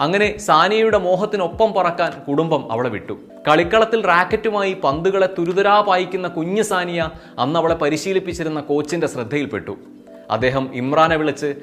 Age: 30-49